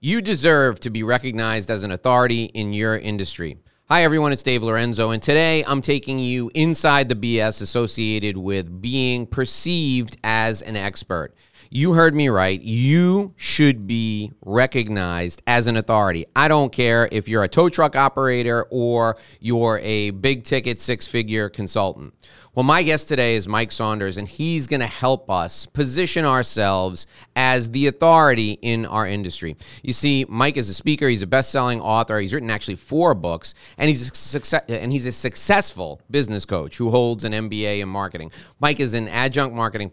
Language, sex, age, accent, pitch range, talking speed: English, male, 30-49, American, 105-135 Hz, 170 wpm